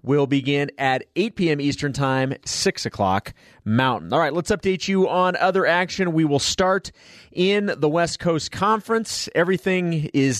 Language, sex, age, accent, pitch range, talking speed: English, male, 30-49, American, 130-165 Hz, 160 wpm